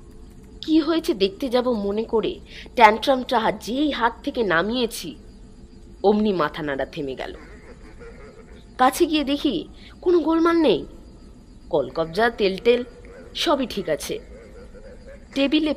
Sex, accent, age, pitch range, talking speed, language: female, native, 20-39, 155-240 Hz, 110 wpm, Bengali